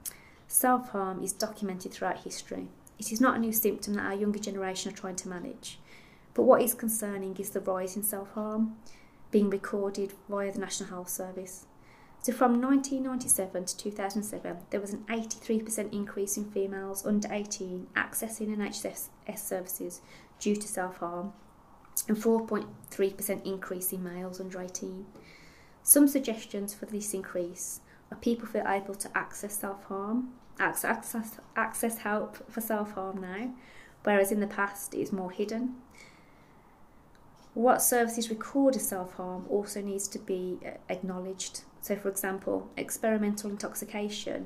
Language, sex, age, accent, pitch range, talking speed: English, female, 20-39, British, 190-220 Hz, 140 wpm